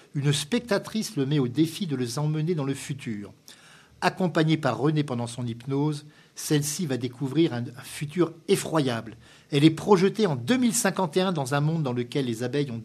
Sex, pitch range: male, 130-165 Hz